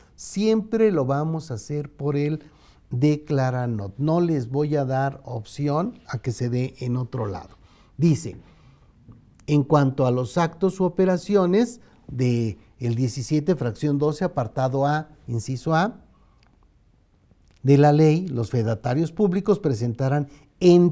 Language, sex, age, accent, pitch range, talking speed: Spanish, male, 50-69, Mexican, 120-155 Hz, 130 wpm